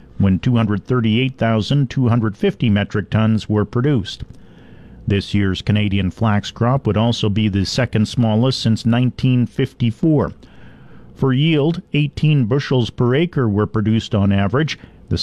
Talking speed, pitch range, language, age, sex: 120 wpm, 105-130 Hz, English, 50-69, male